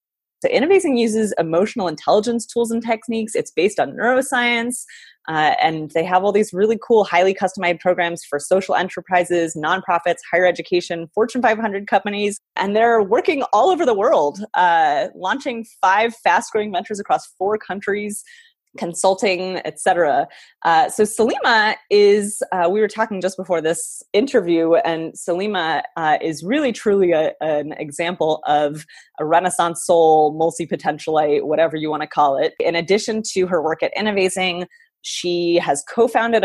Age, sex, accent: 20-39, female, American